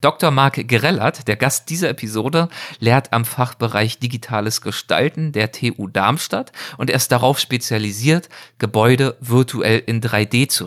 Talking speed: 140 wpm